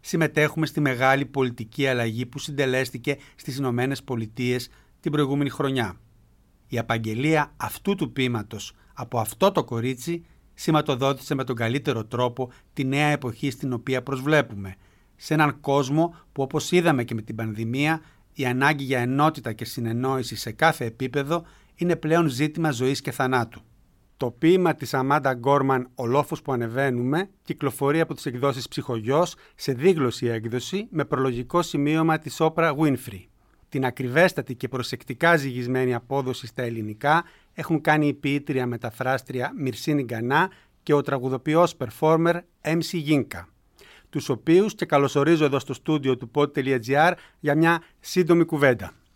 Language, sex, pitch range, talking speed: Greek, male, 125-155 Hz, 140 wpm